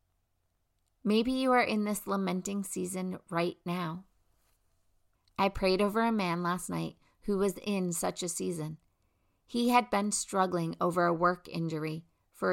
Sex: female